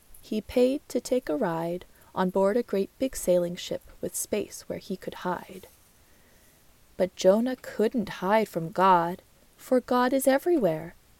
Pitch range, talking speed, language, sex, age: 180-215 Hz, 155 wpm, English, female, 20-39